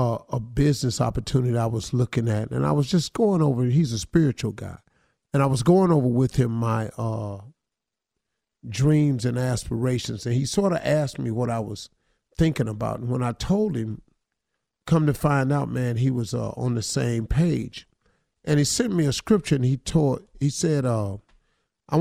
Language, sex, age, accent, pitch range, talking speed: English, male, 50-69, American, 115-140 Hz, 195 wpm